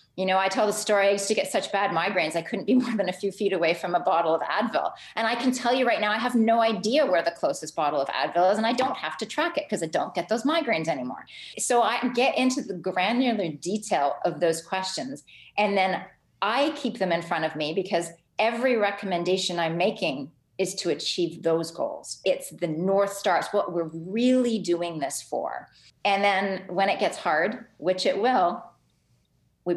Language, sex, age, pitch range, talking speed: English, female, 30-49, 170-215 Hz, 220 wpm